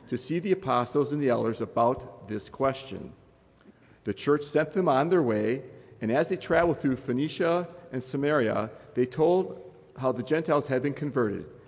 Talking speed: 170 wpm